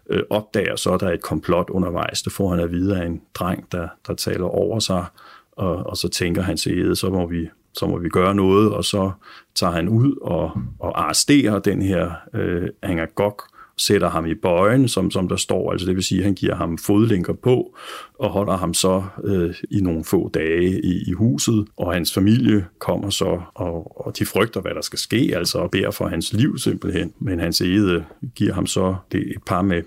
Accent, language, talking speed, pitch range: native, Danish, 210 wpm, 90-105 Hz